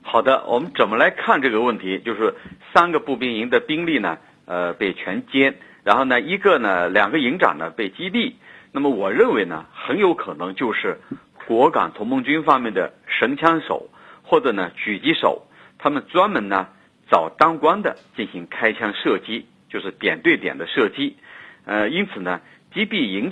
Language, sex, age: Chinese, male, 50-69